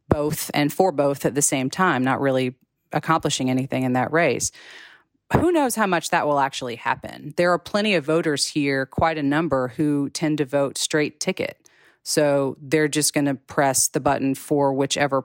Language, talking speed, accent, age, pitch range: English, 185 wpm, American, 30-49, 135-165 Hz